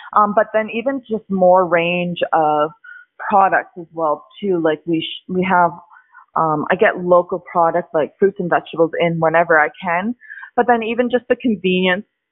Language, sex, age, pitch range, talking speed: English, female, 20-39, 160-195 Hz, 175 wpm